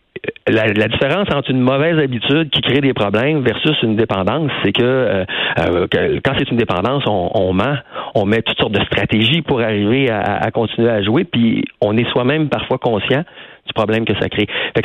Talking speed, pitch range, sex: 200 wpm, 105-140 Hz, male